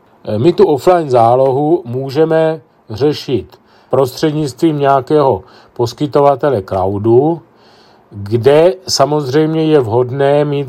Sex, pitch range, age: male, 115-135 Hz, 40-59